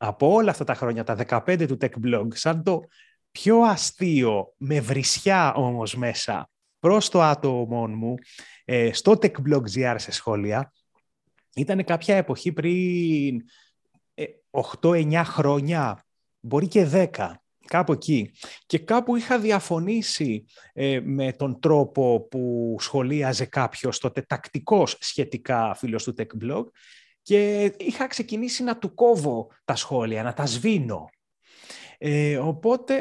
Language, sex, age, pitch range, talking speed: Greek, male, 30-49, 130-220 Hz, 120 wpm